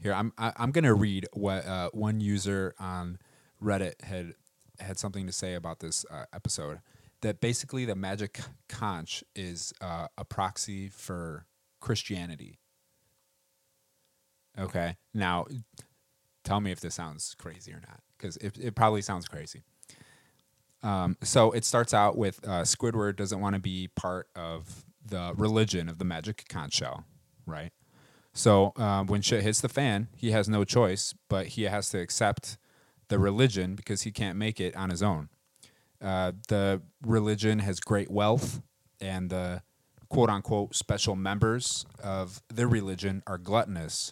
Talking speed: 150 wpm